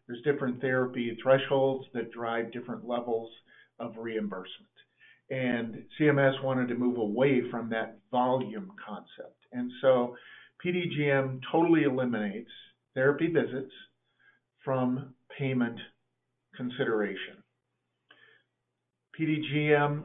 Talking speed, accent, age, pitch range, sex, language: 95 wpm, American, 50-69, 120-150 Hz, male, English